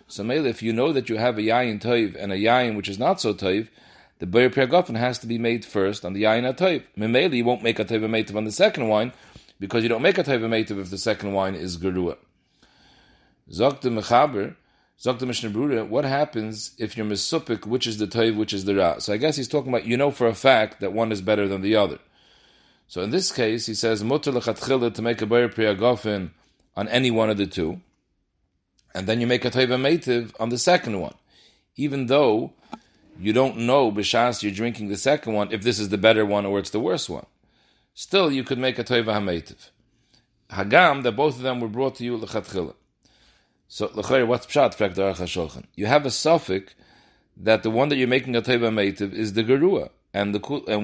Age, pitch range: 40-59, 105-125 Hz